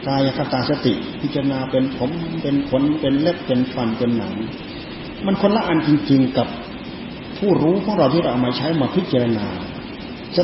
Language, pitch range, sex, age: Thai, 125-160 Hz, male, 30-49